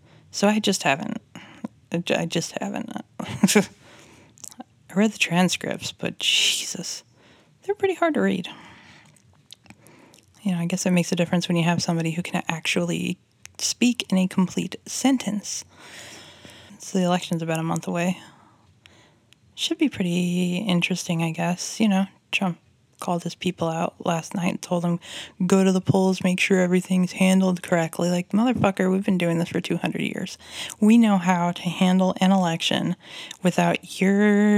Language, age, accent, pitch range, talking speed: English, 20-39, American, 170-195 Hz, 155 wpm